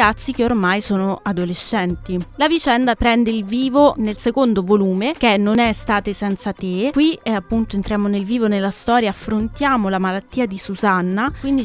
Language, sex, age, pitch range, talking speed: Italian, female, 20-39, 200-255 Hz, 170 wpm